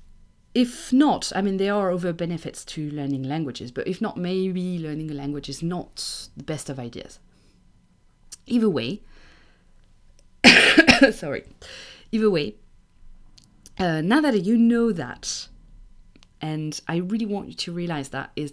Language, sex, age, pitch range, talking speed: English, female, 30-49, 145-220 Hz, 145 wpm